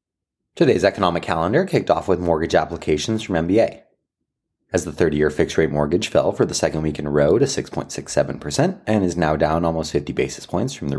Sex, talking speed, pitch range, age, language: male, 190 wpm, 80-115 Hz, 30-49, English